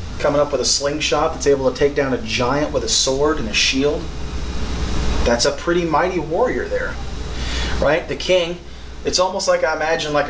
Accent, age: American, 30-49